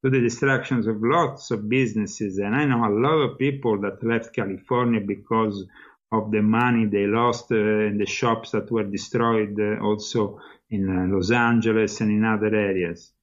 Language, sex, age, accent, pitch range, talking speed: English, male, 50-69, Italian, 105-135 Hz, 180 wpm